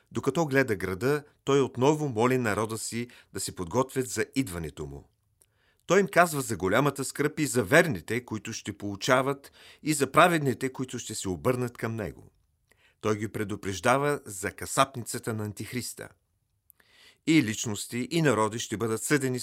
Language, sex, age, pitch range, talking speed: Bulgarian, male, 40-59, 105-135 Hz, 150 wpm